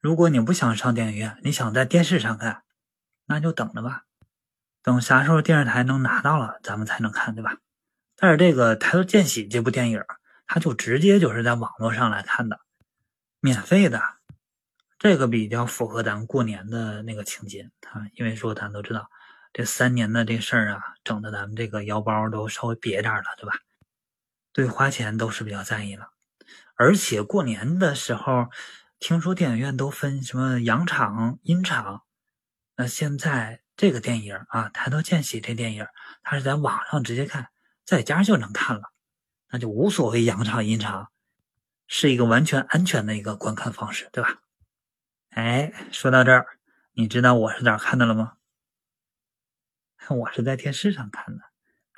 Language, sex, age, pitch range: Chinese, male, 20-39, 110-145 Hz